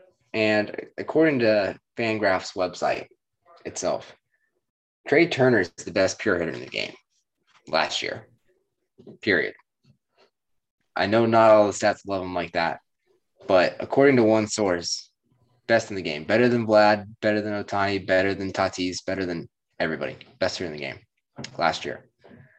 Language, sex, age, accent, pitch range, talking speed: English, male, 20-39, American, 95-115 Hz, 150 wpm